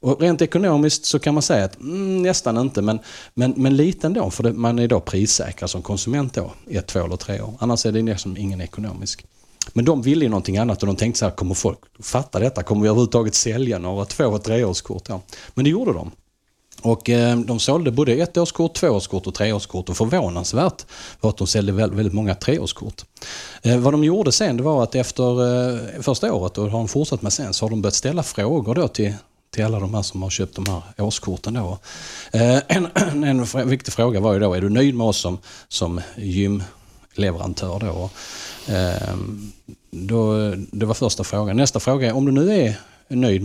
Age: 30-49